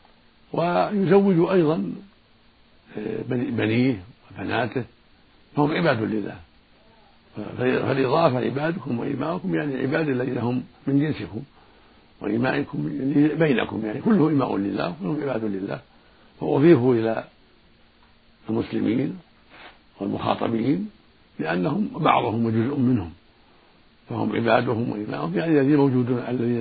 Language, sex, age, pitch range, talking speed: Arabic, male, 60-79, 110-145 Hz, 90 wpm